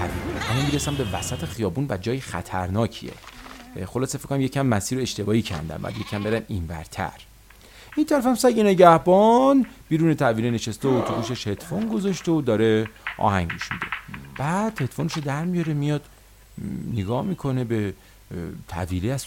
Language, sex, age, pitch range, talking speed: English, male, 40-59, 100-140 Hz, 145 wpm